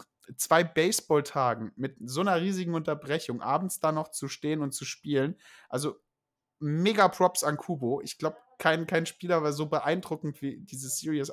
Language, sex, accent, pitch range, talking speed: German, male, German, 145-170 Hz, 165 wpm